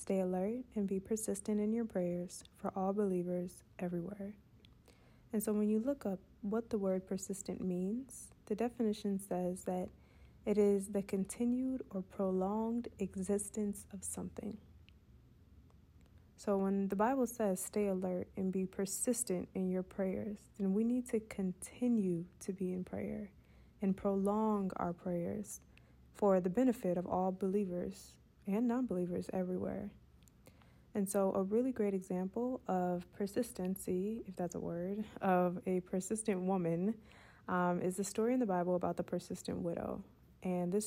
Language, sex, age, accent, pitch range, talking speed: English, female, 20-39, American, 180-210 Hz, 145 wpm